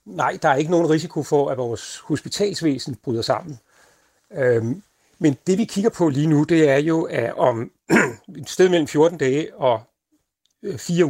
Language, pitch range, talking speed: Danish, 140-175 Hz, 170 wpm